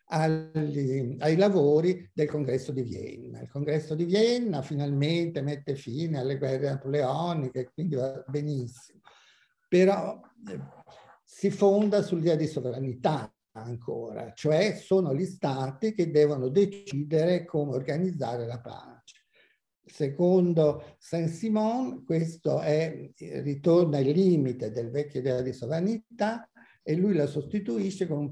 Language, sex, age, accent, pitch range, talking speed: Italian, male, 50-69, native, 140-185 Hz, 120 wpm